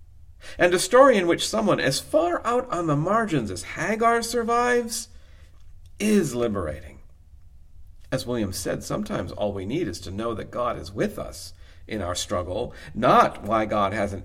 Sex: male